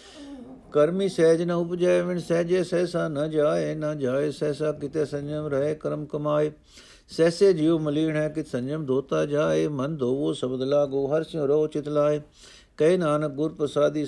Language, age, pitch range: Punjabi, 60-79, 130-155 Hz